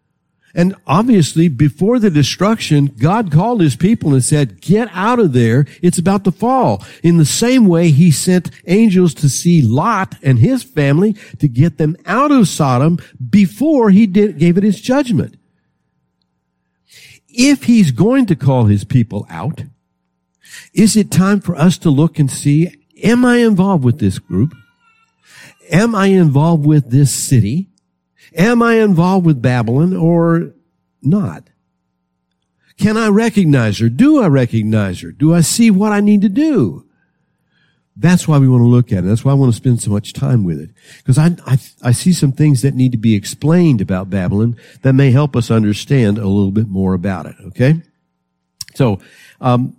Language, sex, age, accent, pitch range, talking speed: English, male, 60-79, American, 120-185 Hz, 175 wpm